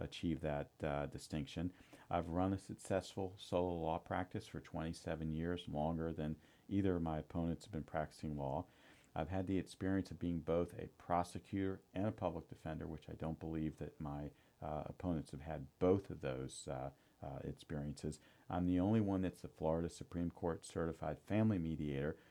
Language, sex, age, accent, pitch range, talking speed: English, male, 50-69, American, 80-95 Hz, 175 wpm